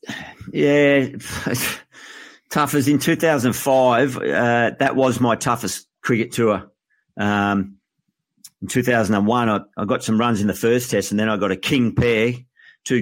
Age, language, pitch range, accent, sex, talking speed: 50-69, English, 100-120 Hz, Australian, male, 145 wpm